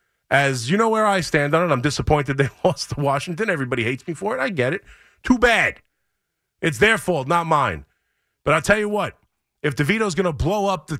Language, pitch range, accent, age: English, 140-195 Hz, American, 30-49